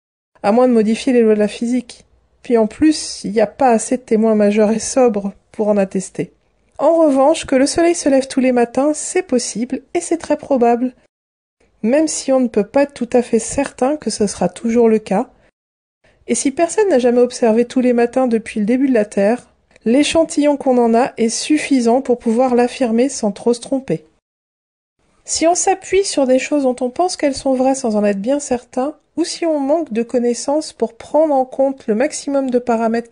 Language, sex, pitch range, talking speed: French, female, 230-285 Hz, 210 wpm